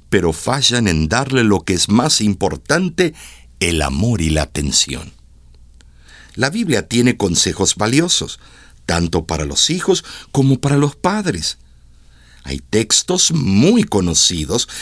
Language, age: Spanish, 60-79